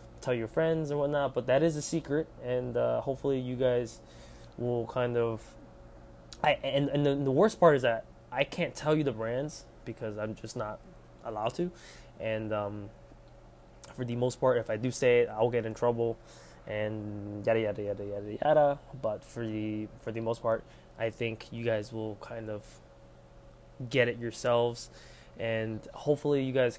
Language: English